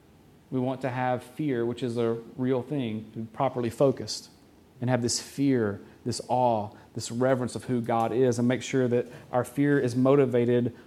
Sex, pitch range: male, 120-155 Hz